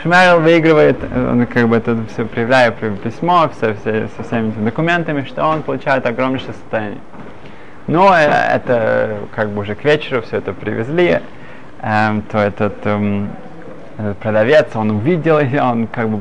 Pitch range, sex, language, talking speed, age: 110-140 Hz, male, Russian, 145 wpm, 20-39